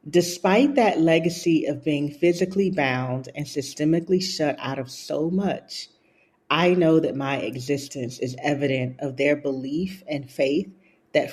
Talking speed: 145 wpm